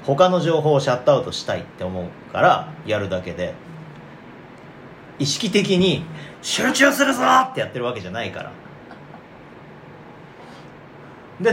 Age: 30-49